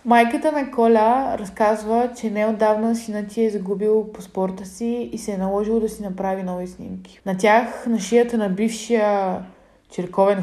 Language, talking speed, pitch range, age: Bulgarian, 160 wpm, 195-230 Hz, 20-39